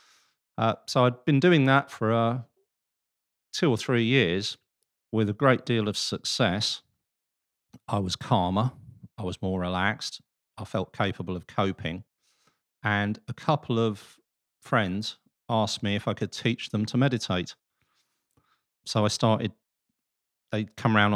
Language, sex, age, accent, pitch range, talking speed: English, male, 40-59, British, 95-115 Hz, 140 wpm